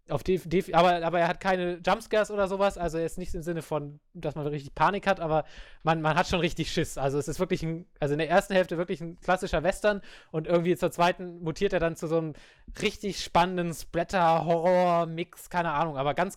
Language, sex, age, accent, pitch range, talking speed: English, male, 20-39, German, 140-170 Hz, 230 wpm